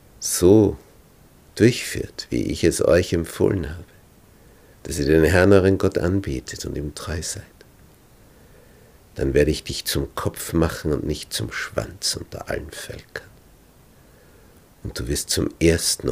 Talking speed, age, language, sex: 140 wpm, 60-79, German, male